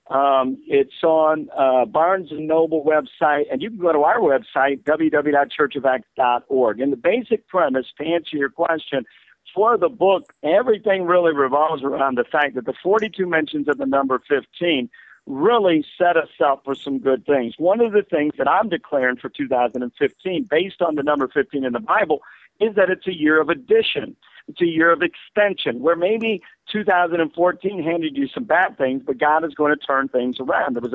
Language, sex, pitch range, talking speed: English, male, 140-185 Hz, 185 wpm